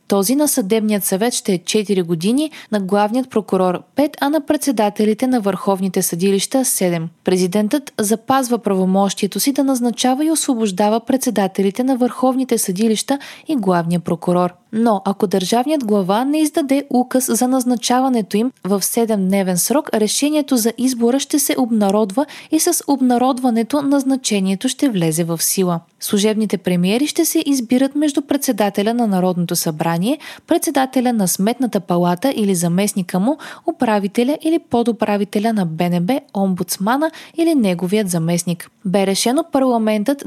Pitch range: 195-270 Hz